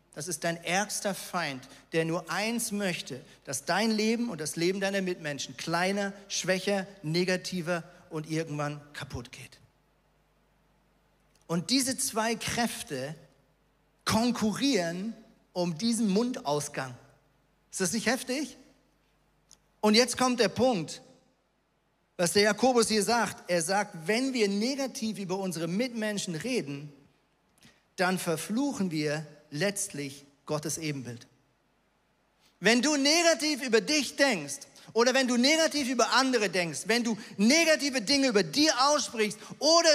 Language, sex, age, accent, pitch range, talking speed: German, male, 40-59, German, 175-280 Hz, 125 wpm